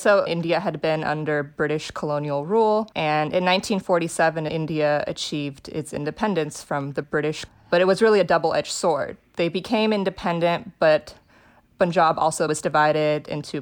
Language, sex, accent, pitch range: English, female, American, 150-175 Hz